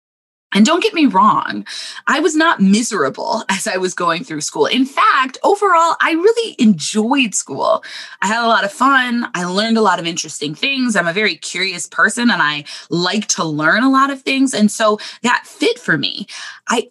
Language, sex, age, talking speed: English, female, 20-39, 200 wpm